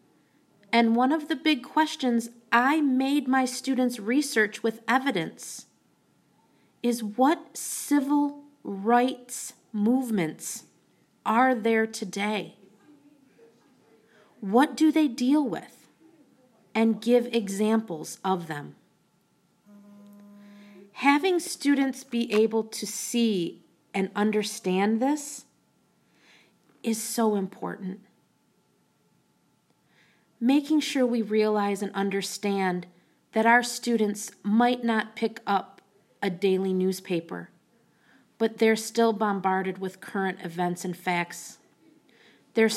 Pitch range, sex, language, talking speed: 195-250 Hz, female, English, 95 wpm